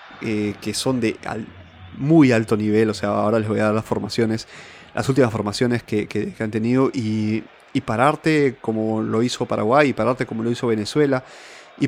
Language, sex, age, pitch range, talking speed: Spanish, male, 30-49, 110-130 Hz, 195 wpm